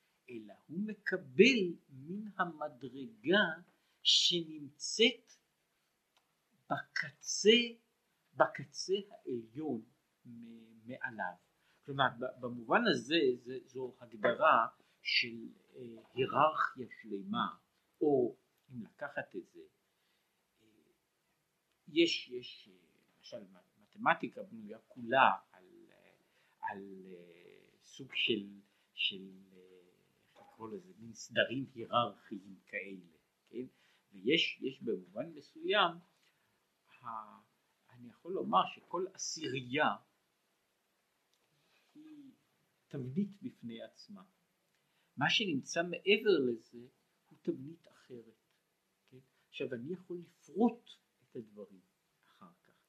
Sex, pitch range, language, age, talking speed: male, 120-200 Hz, Hebrew, 50-69, 75 wpm